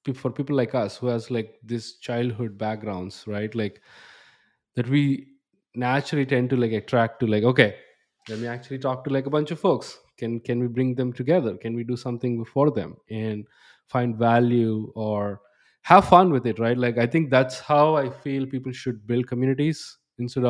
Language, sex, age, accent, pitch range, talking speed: English, male, 20-39, Indian, 110-130 Hz, 190 wpm